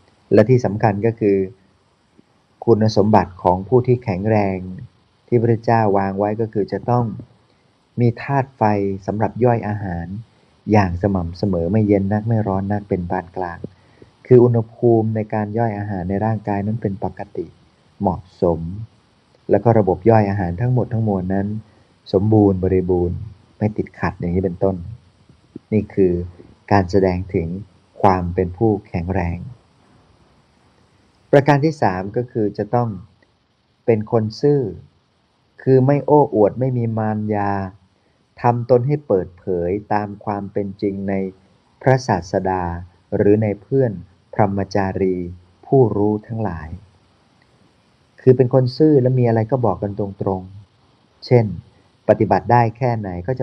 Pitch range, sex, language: 95-115 Hz, male, Thai